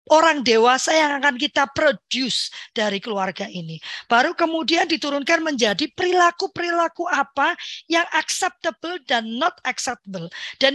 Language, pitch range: Indonesian, 235-320 Hz